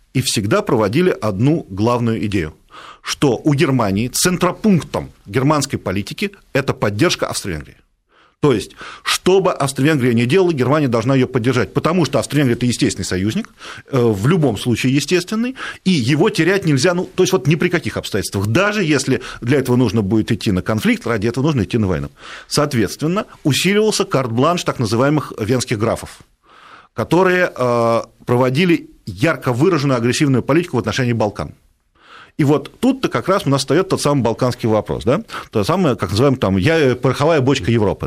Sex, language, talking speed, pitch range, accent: male, Russian, 155 wpm, 115-165 Hz, native